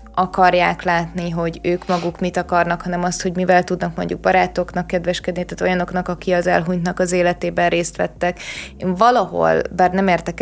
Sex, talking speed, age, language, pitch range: female, 165 wpm, 20-39, Hungarian, 165-185 Hz